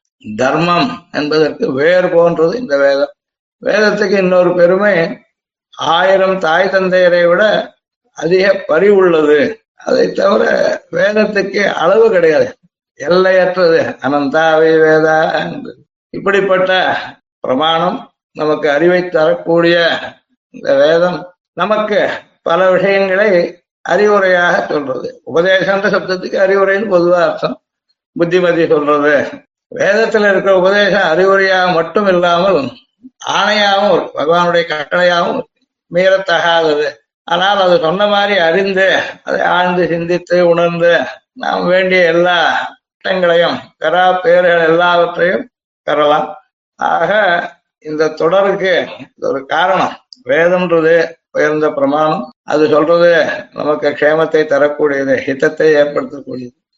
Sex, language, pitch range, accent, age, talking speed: male, Tamil, 165-195 Hz, native, 60-79, 85 wpm